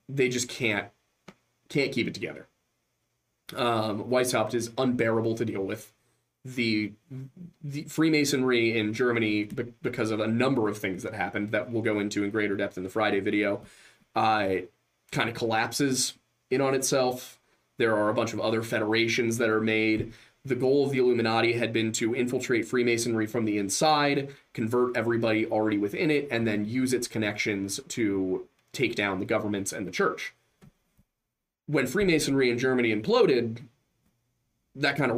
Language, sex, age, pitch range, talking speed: English, male, 20-39, 105-125 Hz, 160 wpm